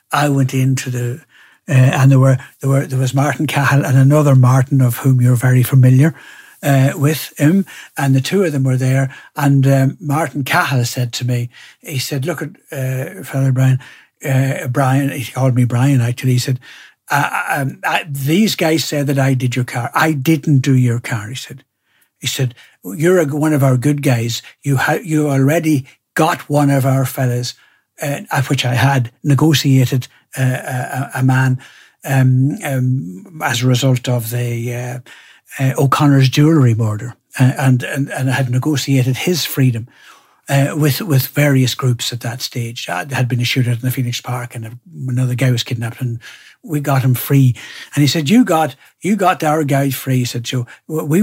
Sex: male